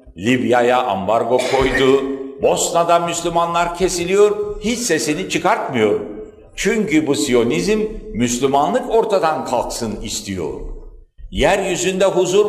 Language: Turkish